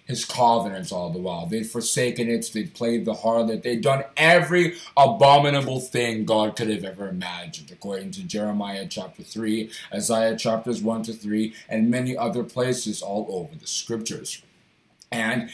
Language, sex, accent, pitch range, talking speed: English, male, American, 115-165 Hz, 160 wpm